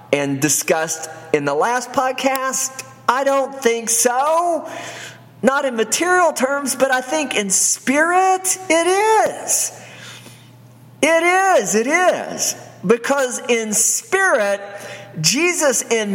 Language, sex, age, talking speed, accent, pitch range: English, male, 50-69, 110 wpm, American, 190-275 Hz